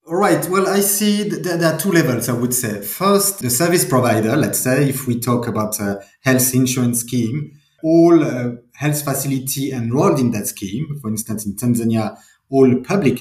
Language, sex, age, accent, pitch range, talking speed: English, male, 30-49, French, 110-145 Hz, 175 wpm